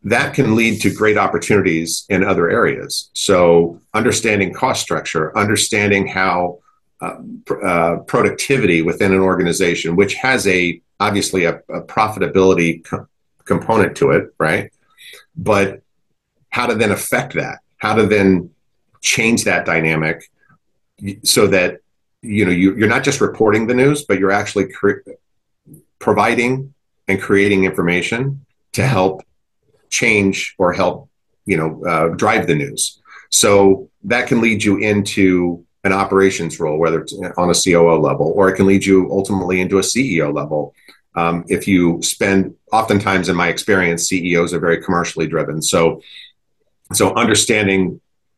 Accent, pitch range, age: American, 85-100 Hz, 50-69